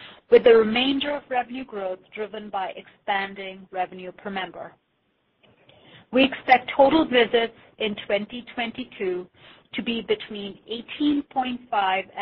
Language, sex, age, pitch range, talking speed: English, female, 50-69, 195-245 Hz, 110 wpm